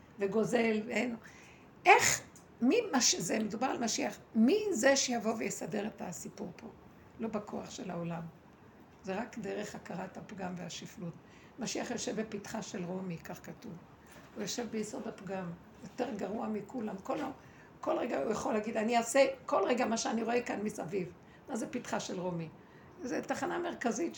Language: Hebrew